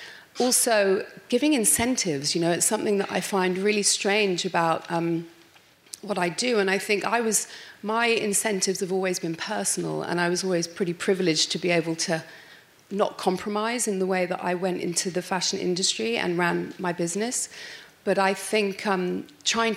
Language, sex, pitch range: English, female, 170-200 Hz